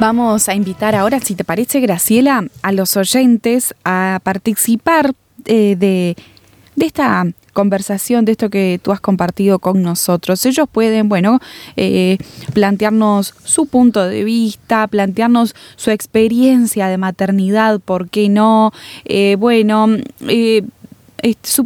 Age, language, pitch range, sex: 10-29, Spanish, 195-235 Hz, female